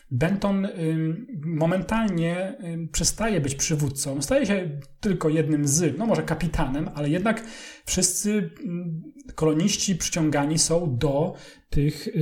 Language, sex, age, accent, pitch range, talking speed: English, male, 40-59, Polish, 150-190 Hz, 105 wpm